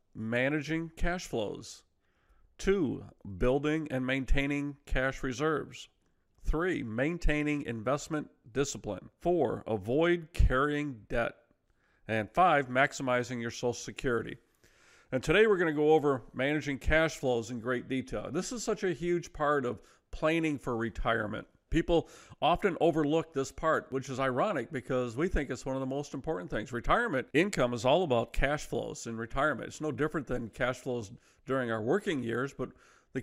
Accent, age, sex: American, 40-59, male